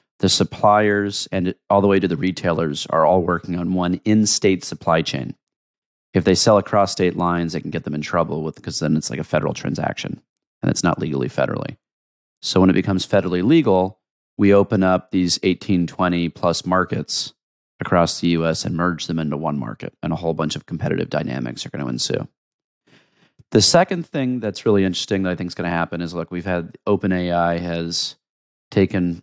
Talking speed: 195 wpm